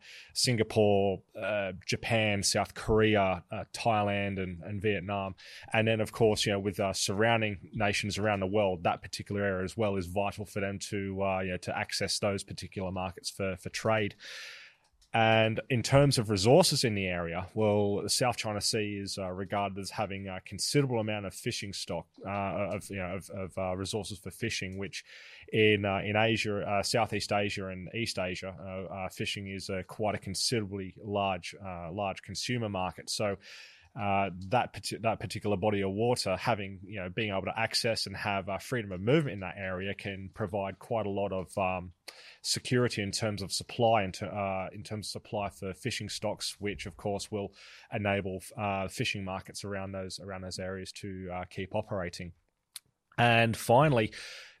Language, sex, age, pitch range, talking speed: English, male, 20-39, 95-110 Hz, 180 wpm